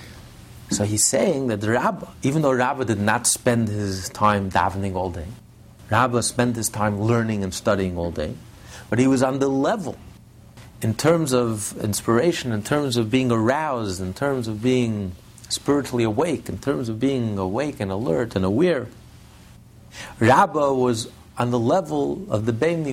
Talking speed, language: 165 wpm, English